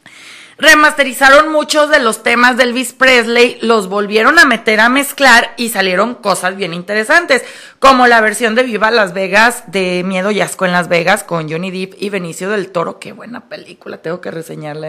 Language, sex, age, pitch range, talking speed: Spanish, female, 30-49, 200-270 Hz, 185 wpm